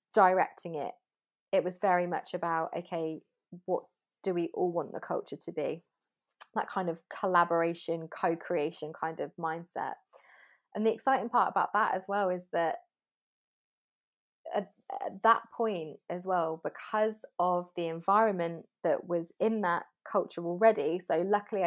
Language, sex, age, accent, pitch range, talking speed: English, female, 20-39, British, 170-215 Hz, 145 wpm